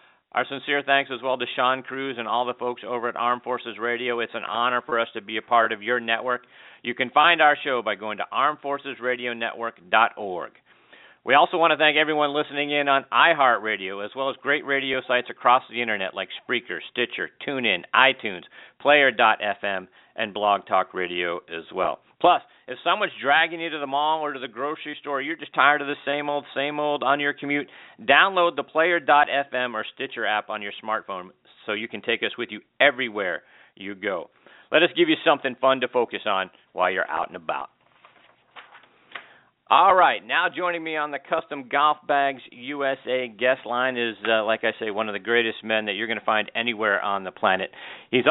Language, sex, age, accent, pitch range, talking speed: English, male, 50-69, American, 115-145 Hz, 200 wpm